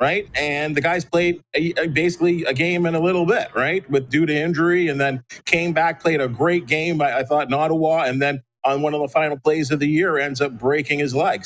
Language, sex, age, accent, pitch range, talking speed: English, male, 40-59, American, 140-180 Hz, 250 wpm